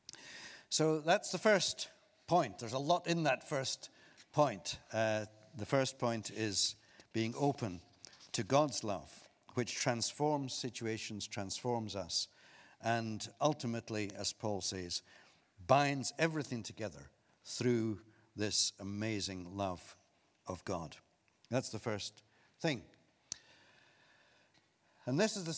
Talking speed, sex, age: 115 wpm, male, 60-79